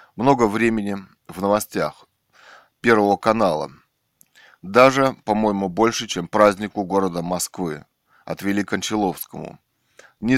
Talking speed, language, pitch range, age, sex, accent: 95 wpm, Russian, 100-115 Hz, 20-39, male, native